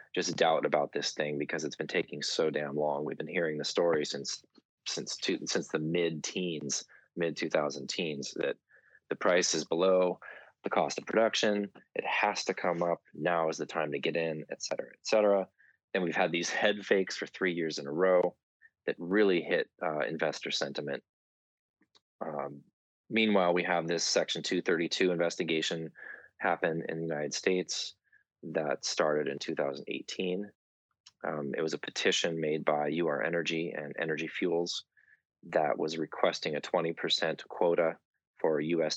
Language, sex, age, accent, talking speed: English, male, 20-39, American, 160 wpm